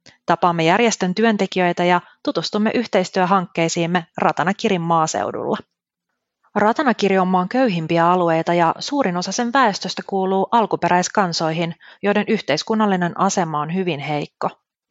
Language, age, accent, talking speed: Finnish, 30-49, native, 105 wpm